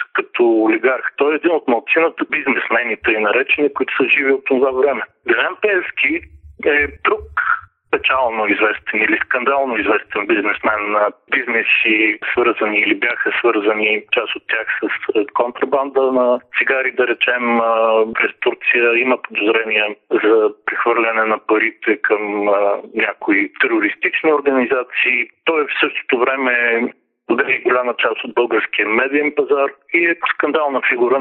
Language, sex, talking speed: Bulgarian, male, 130 wpm